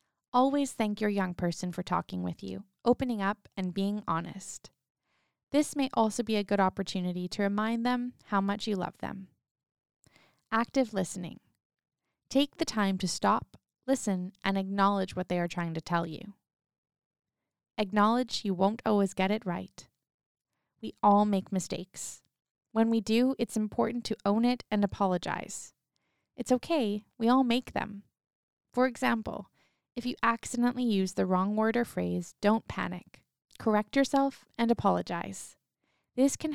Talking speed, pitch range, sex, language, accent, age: 150 wpm, 185-230 Hz, female, English, American, 20-39